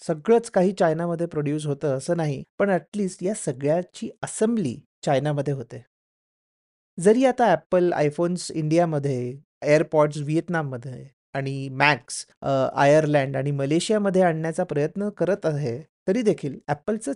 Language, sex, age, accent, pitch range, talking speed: Marathi, male, 30-49, native, 140-190 Hz, 105 wpm